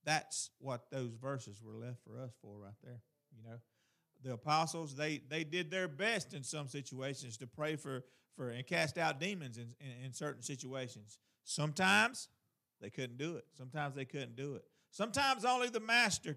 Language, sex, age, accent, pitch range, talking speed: English, male, 40-59, American, 125-160 Hz, 185 wpm